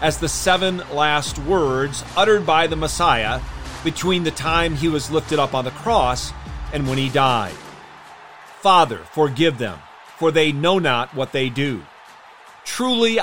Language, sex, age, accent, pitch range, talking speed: English, male, 40-59, American, 120-160 Hz, 155 wpm